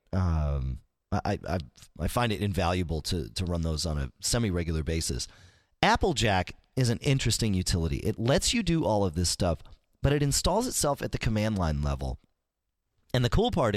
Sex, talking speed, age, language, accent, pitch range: male, 180 wpm, 30-49, English, American, 95-130 Hz